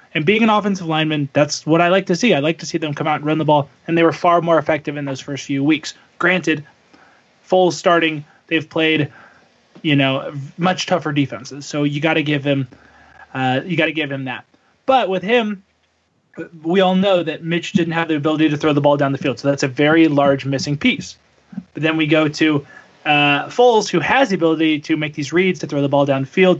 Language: English